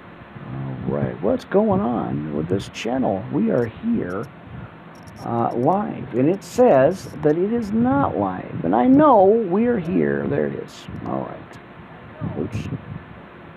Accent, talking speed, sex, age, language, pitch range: American, 140 wpm, male, 50-69, English, 125-175 Hz